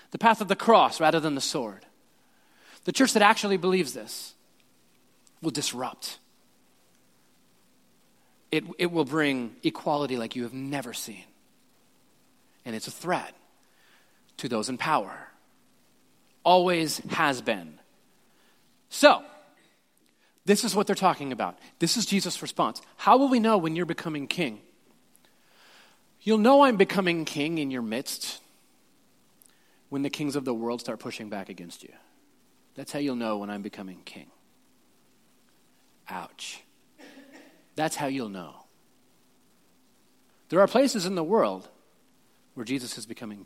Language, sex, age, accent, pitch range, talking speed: English, male, 30-49, American, 120-185 Hz, 135 wpm